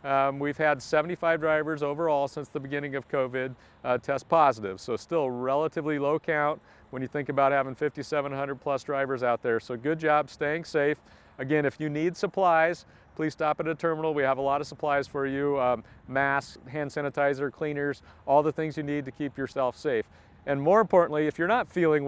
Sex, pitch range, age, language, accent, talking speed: male, 135-160 Hz, 40-59, English, American, 200 wpm